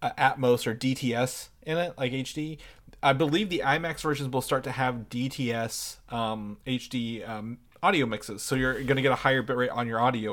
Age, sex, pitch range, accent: 30-49, male, 115-150 Hz, American